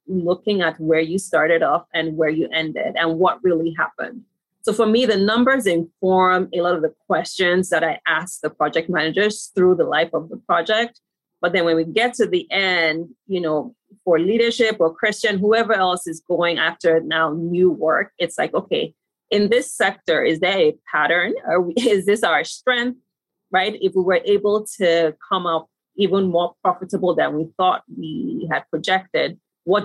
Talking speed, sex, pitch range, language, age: 185 wpm, female, 165-205 Hz, English, 30-49